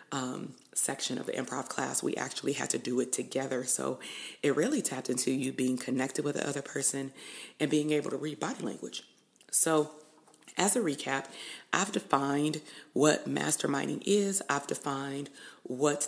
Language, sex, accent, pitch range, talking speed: English, female, American, 130-150 Hz, 165 wpm